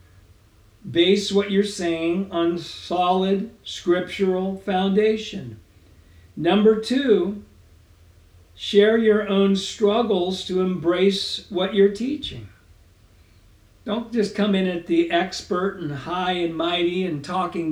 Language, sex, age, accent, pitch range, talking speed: English, male, 50-69, American, 150-195 Hz, 110 wpm